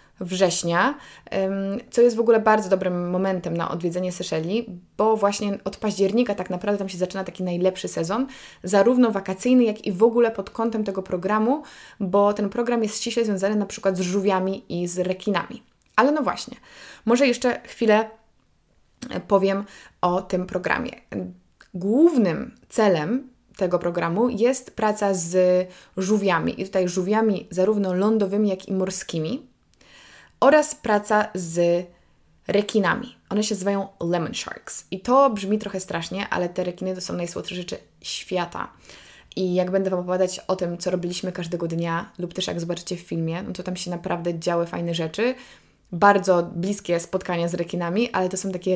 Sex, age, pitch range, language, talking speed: female, 20-39, 180-215 Hz, Polish, 160 wpm